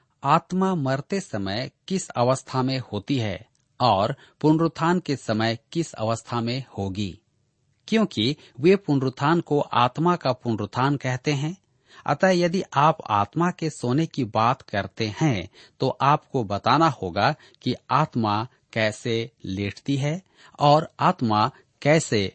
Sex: male